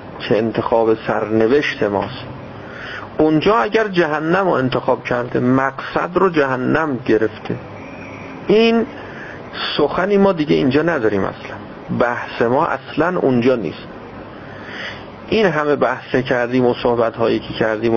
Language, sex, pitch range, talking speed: Persian, male, 115-175 Hz, 110 wpm